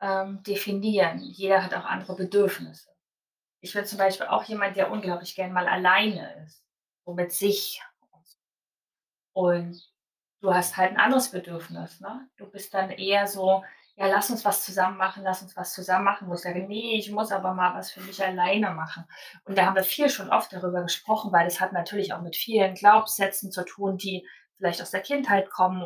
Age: 30-49